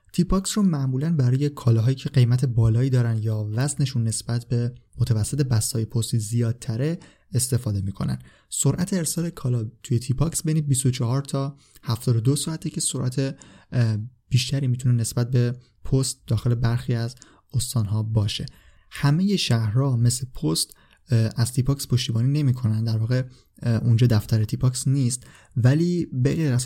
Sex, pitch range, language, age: male, 115-140 Hz, Persian, 20-39